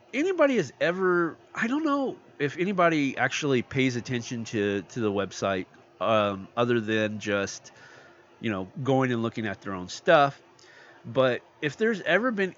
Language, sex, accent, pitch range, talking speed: English, male, American, 110-145 Hz, 155 wpm